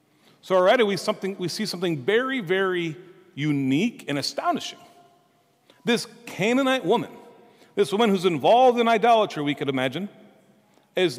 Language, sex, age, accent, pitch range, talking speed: English, male, 40-59, American, 150-220 Hz, 135 wpm